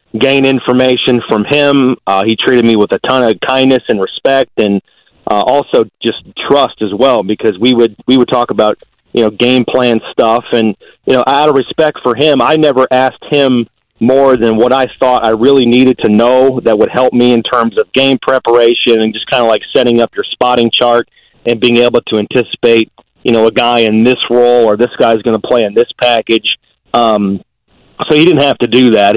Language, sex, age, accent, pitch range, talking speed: English, male, 40-59, American, 115-125 Hz, 215 wpm